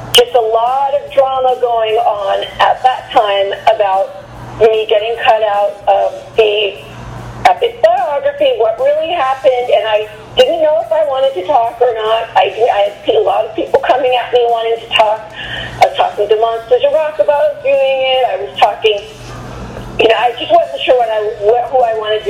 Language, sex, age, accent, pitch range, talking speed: English, female, 40-59, American, 215-295 Hz, 190 wpm